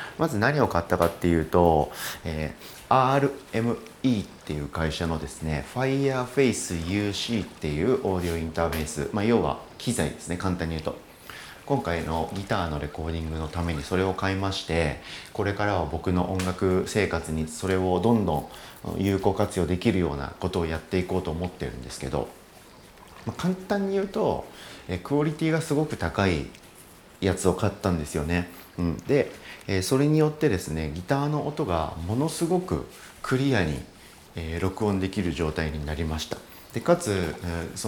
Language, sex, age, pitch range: Japanese, male, 40-59, 80-115 Hz